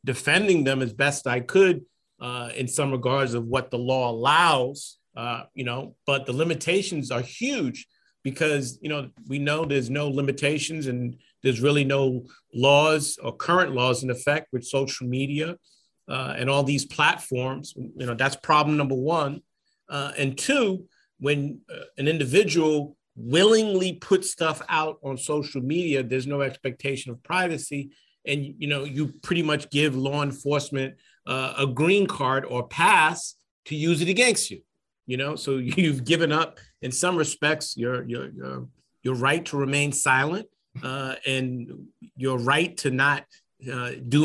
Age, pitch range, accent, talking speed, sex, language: 50-69, 130-155 Hz, American, 160 wpm, male, English